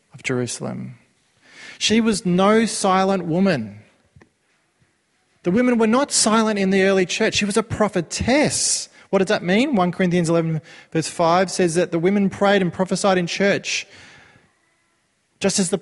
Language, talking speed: English, 155 wpm